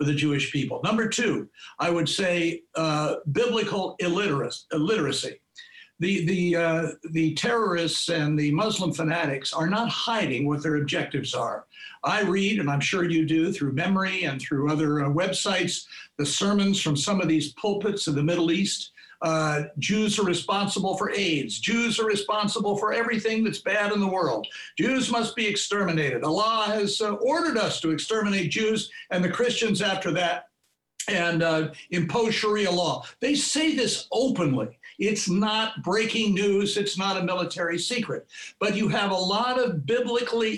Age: 60-79